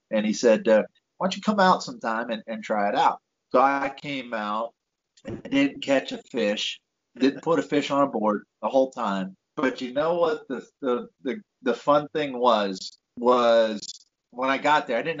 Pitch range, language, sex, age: 125-185 Hz, English, male, 30-49